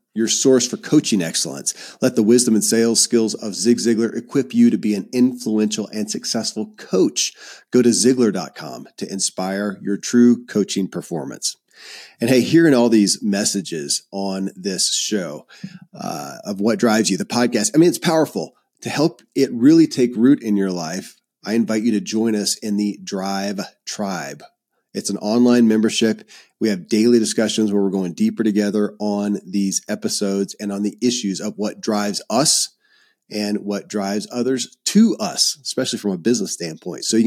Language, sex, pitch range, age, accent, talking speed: English, male, 100-120 Hz, 40-59, American, 175 wpm